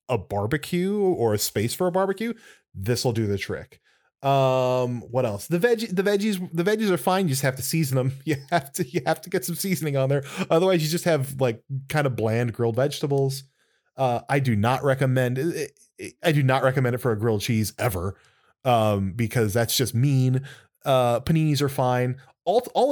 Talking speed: 200 wpm